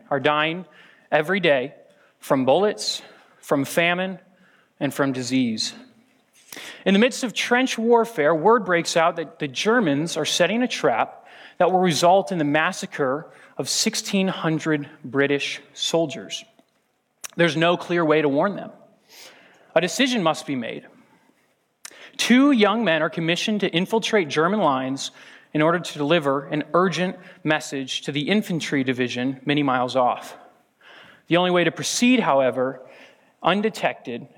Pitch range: 150-190 Hz